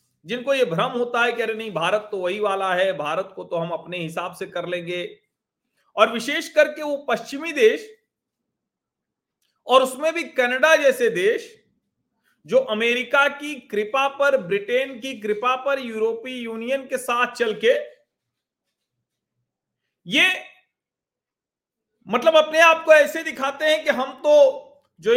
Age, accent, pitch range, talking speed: 40-59, native, 200-270 Hz, 145 wpm